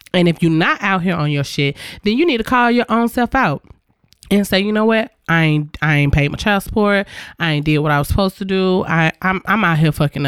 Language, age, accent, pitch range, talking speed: English, 20-39, American, 155-205 Hz, 270 wpm